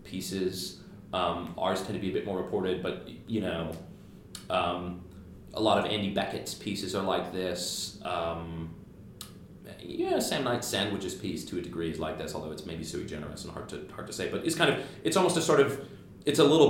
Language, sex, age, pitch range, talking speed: English, male, 30-49, 90-105 Hz, 210 wpm